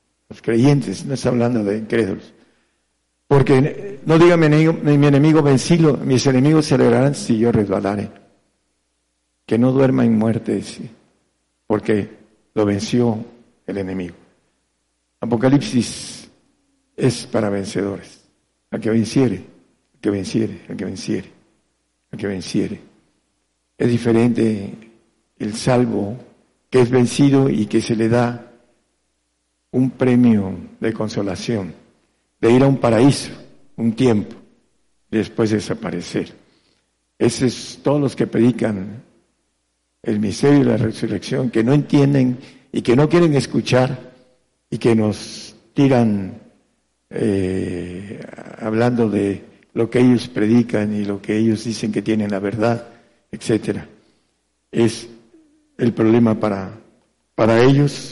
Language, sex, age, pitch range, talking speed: Spanish, male, 60-79, 100-125 Hz, 125 wpm